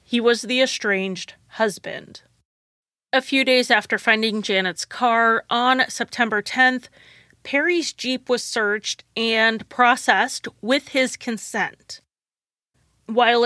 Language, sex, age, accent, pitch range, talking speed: English, female, 30-49, American, 210-250 Hz, 110 wpm